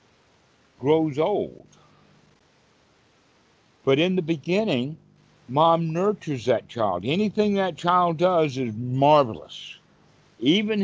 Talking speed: 95 wpm